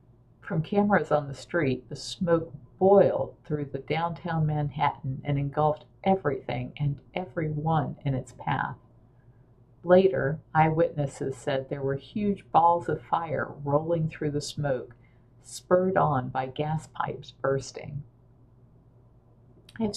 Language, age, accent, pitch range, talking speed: English, 50-69, American, 130-160 Hz, 125 wpm